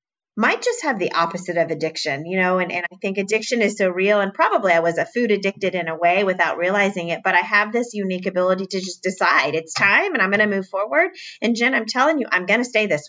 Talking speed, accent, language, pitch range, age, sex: 260 wpm, American, English, 180-225 Hz, 30-49, female